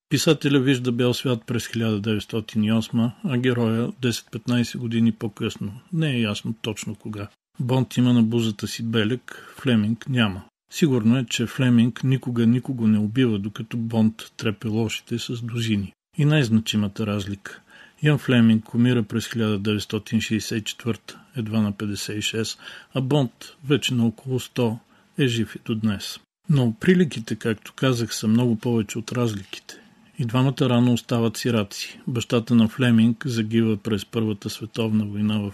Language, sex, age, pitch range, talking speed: Bulgarian, male, 40-59, 110-125 Hz, 140 wpm